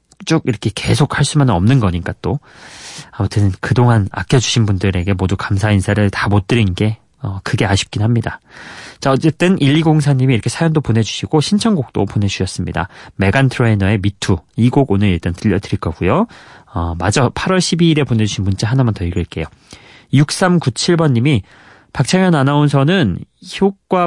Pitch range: 100-145 Hz